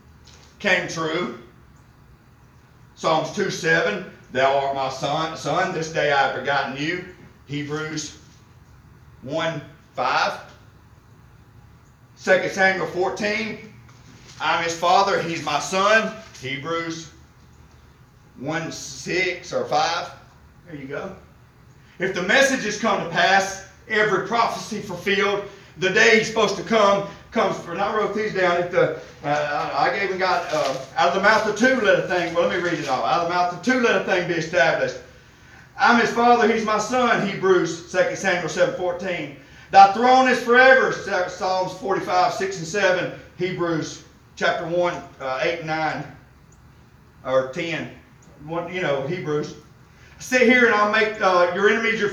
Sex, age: male, 40-59